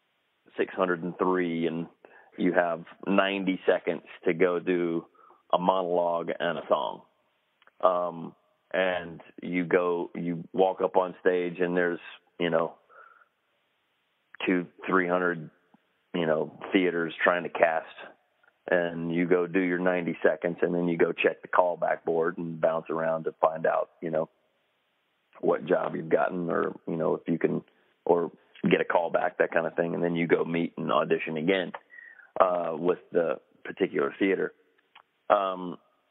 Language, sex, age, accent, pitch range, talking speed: English, male, 30-49, American, 85-95 Hz, 155 wpm